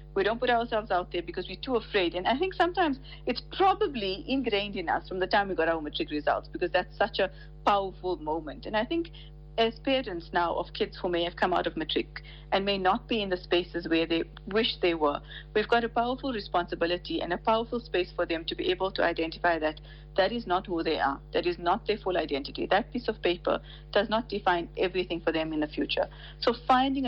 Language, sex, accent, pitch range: English, female, Indian, 160-215 Hz